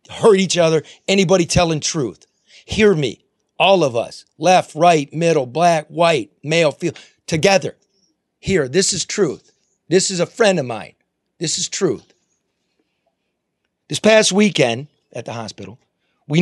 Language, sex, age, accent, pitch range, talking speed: English, male, 40-59, American, 155-195 Hz, 145 wpm